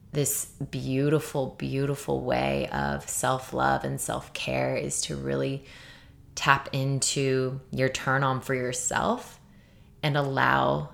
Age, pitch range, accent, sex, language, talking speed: 20-39, 115-145 Hz, American, female, English, 105 wpm